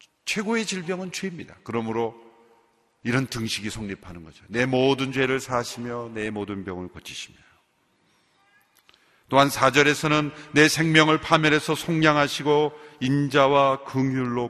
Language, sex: Korean, male